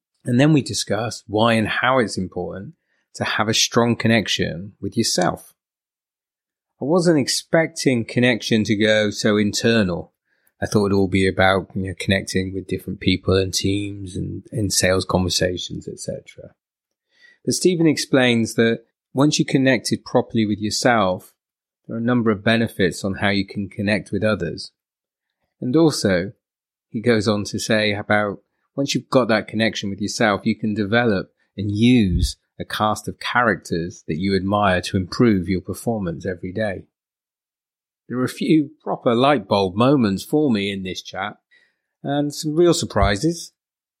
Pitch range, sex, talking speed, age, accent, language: 95-120 Hz, male, 160 wpm, 30-49, British, English